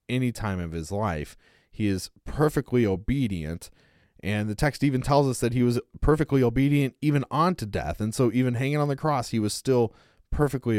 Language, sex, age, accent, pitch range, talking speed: English, male, 30-49, American, 100-130 Hz, 190 wpm